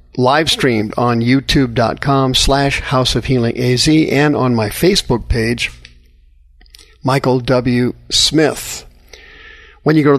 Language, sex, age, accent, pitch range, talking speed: English, male, 50-69, American, 115-140 Hz, 125 wpm